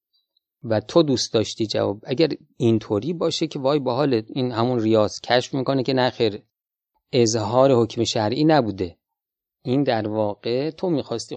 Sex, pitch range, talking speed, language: male, 110-150 Hz, 155 wpm, Persian